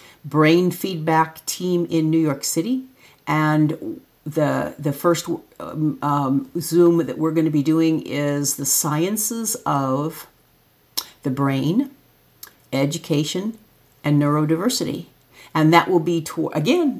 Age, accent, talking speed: 50-69, American, 125 wpm